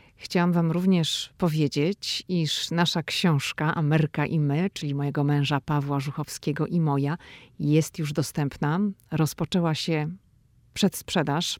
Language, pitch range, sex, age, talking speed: Polish, 150-180 Hz, female, 40-59, 120 wpm